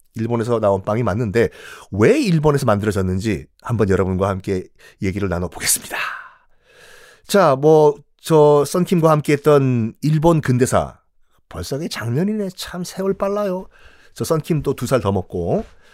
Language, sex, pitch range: Korean, male, 115-185 Hz